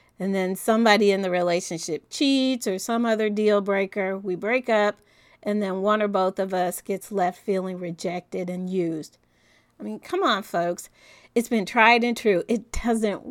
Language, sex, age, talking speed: English, female, 40-59, 180 wpm